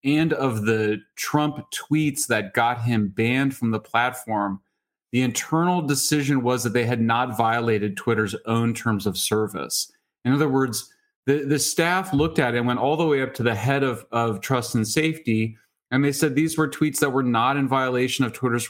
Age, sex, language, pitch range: 30-49, male, English, 115-140 Hz